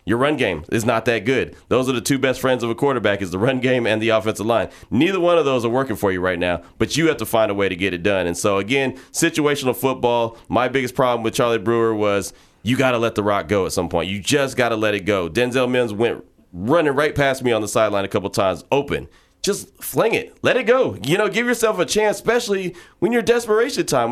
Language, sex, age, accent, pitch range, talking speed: English, male, 30-49, American, 105-145 Hz, 260 wpm